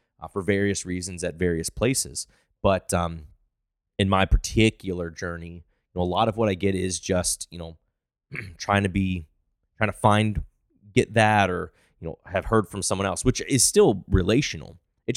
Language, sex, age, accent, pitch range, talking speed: English, male, 30-49, American, 85-105 Hz, 175 wpm